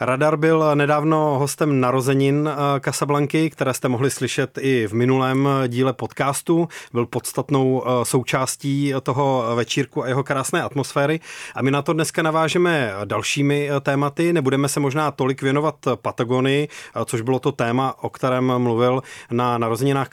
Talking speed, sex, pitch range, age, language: 140 wpm, male, 120-145 Hz, 30-49, Czech